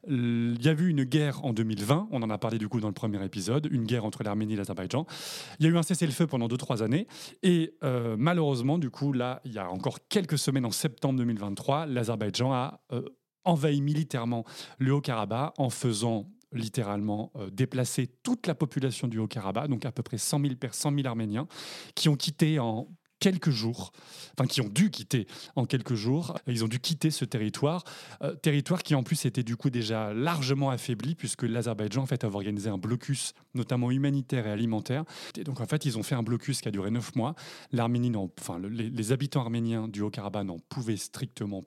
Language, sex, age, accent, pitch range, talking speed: French, male, 30-49, French, 115-140 Hz, 210 wpm